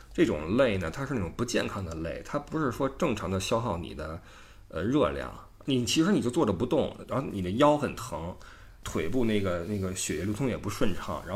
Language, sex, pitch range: Chinese, male, 95-125 Hz